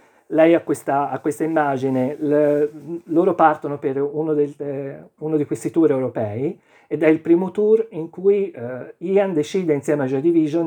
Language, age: Italian, 40-59